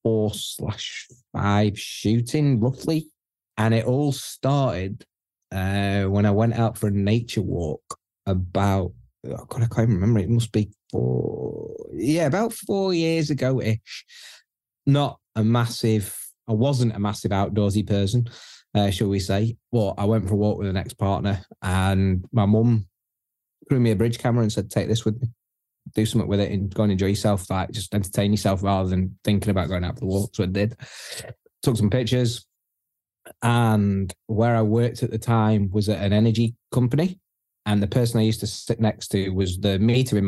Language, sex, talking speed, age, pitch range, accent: English, male, 180 wpm, 20-39, 100-120 Hz, British